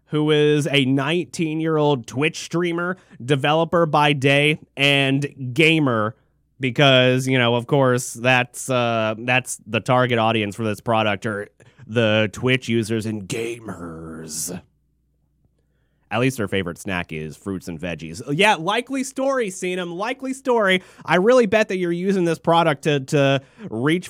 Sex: male